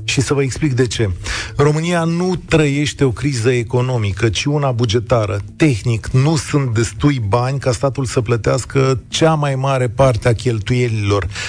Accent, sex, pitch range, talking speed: native, male, 115-155 Hz, 155 wpm